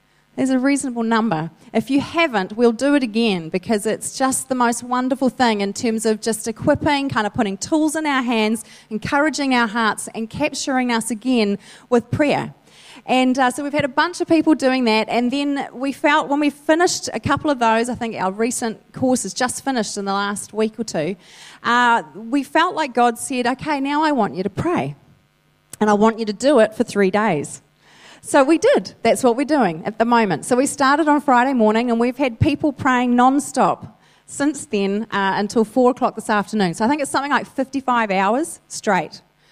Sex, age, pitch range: female, 30-49, 215-275 Hz